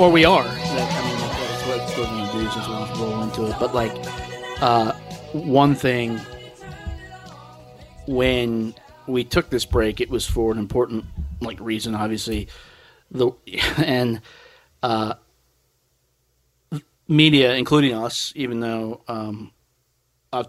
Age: 30-49